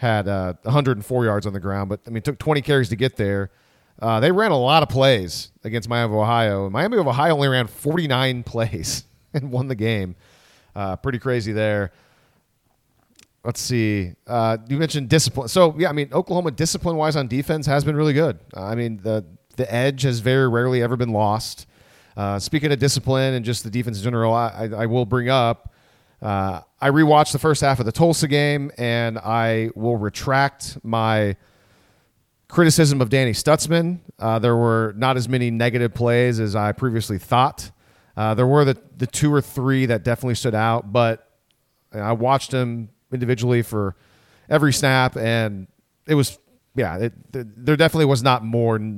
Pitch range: 110-135 Hz